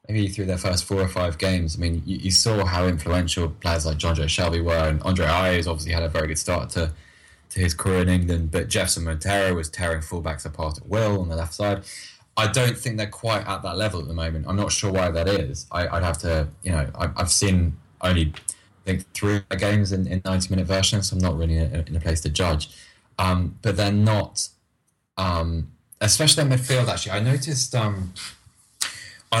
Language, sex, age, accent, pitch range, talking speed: English, male, 20-39, British, 85-100 Hz, 220 wpm